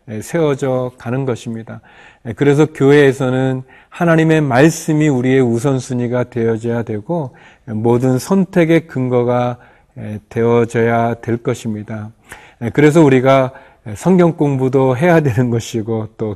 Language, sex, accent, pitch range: Korean, male, native, 115-145 Hz